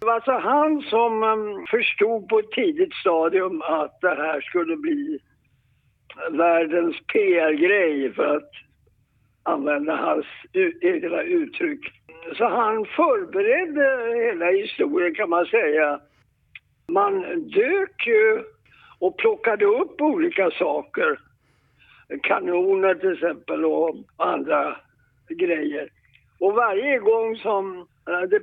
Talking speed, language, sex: 105 wpm, Swedish, male